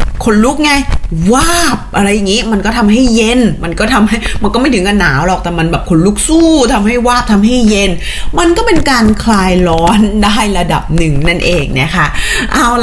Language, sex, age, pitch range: Thai, female, 20-39, 185-235 Hz